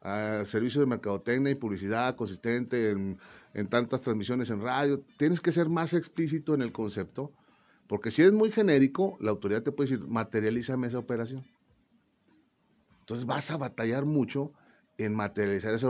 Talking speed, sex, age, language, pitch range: 160 wpm, male, 40-59, Spanish, 110-150 Hz